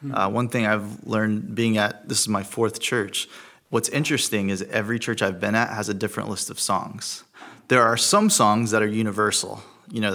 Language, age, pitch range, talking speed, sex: English, 30-49, 100-115 Hz, 205 wpm, male